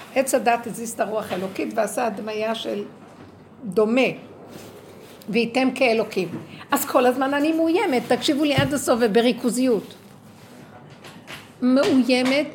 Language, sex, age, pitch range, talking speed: Hebrew, female, 60-79, 215-285 Hz, 115 wpm